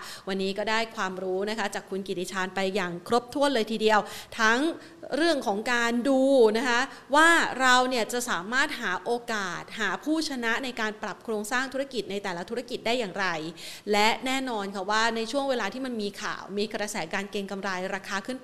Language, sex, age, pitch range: Thai, female, 30-49, 205-255 Hz